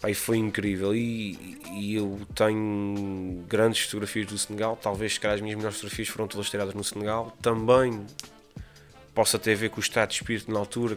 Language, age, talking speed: Portuguese, 20-39, 185 wpm